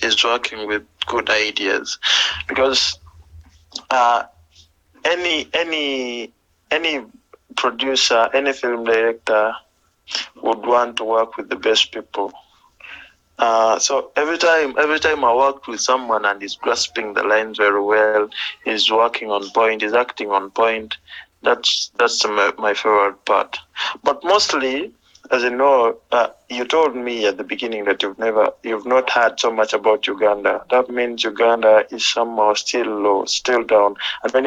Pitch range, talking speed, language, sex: 105-125 Hz, 150 wpm, English, male